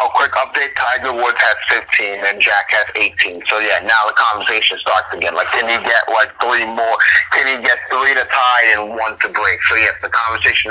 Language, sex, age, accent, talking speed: English, male, 30-49, American, 225 wpm